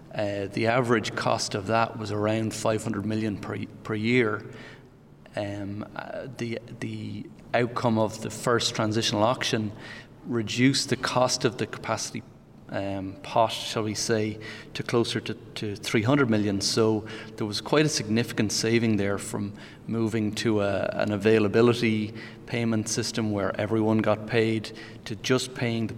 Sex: male